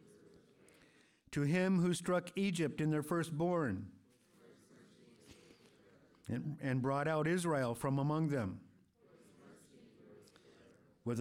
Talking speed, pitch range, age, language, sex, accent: 90 wpm, 130-175 Hz, 50-69, English, male, American